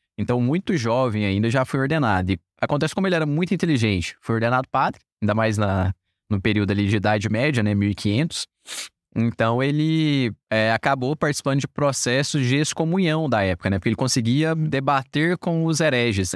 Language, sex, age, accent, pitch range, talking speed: Portuguese, male, 20-39, Brazilian, 105-140 Hz, 170 wpm